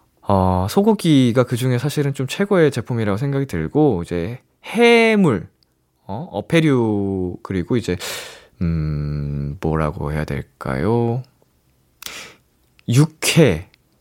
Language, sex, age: Korean, male, 20-39